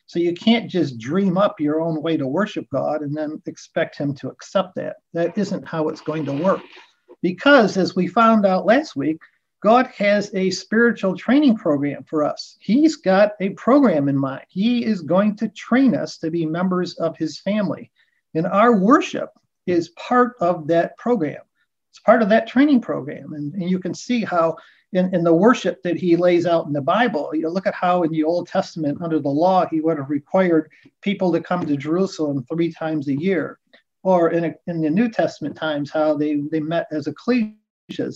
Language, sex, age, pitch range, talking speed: English, male, 50-69, 160-215 Hz, 200 wpm